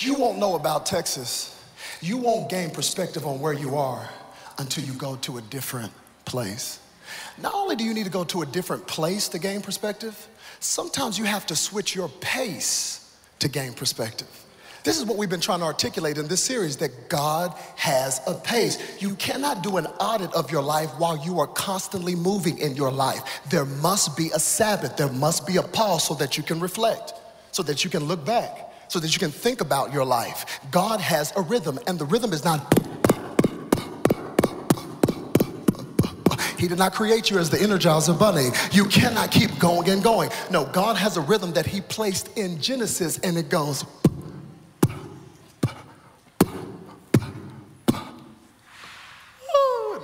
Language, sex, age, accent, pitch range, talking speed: English, male, 40-59, American, 145-195 Hz, 170 wpm